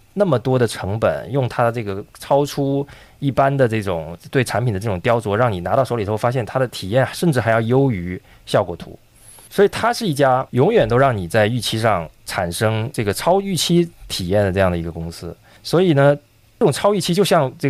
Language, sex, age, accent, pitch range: Chinese, male, 20-39, native, 100-135 Hz